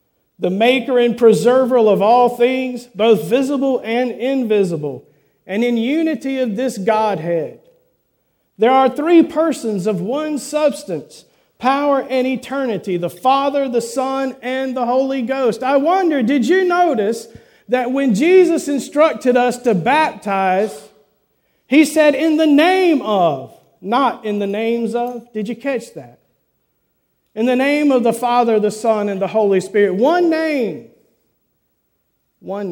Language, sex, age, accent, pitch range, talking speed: English, male, 40-59, American, 205-275 Hz, 140 wpm